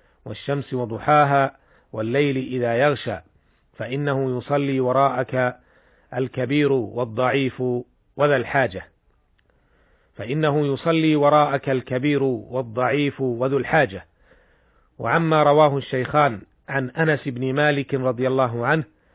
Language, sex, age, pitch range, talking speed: Arabic, male, 40-59, 125-145 Hz, 90 wpm